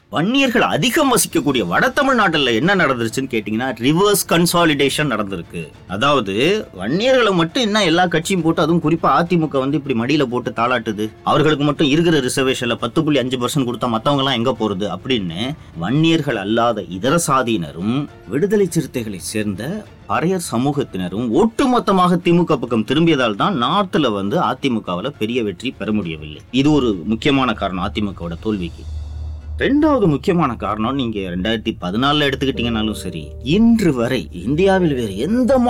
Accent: native